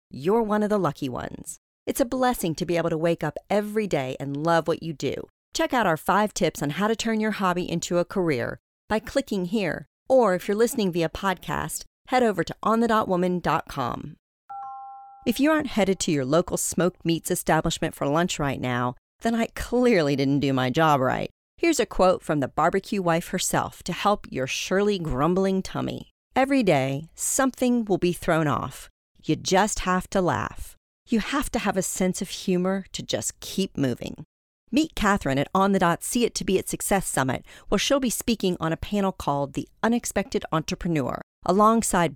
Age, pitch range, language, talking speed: 40-59, 165-220 Hz, English, 190 wpm